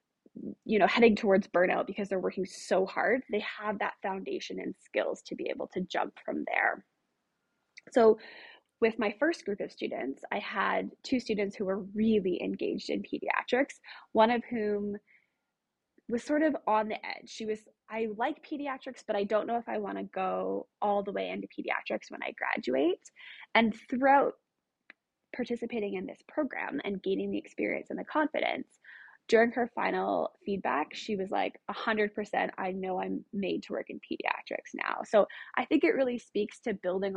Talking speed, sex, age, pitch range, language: 175 wpm, female, 20-39, 200-245 Hz, English